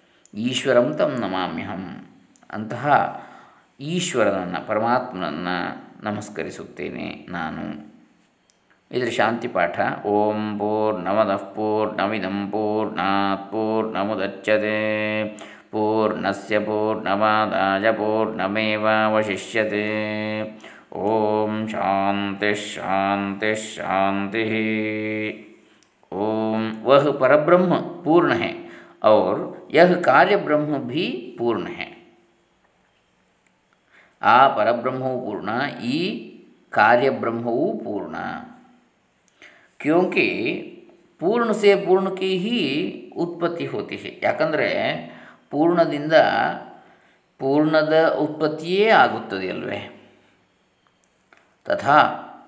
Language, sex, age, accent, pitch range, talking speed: Kannada, male, 20-39, native, 105-140 Hz, 55 wpm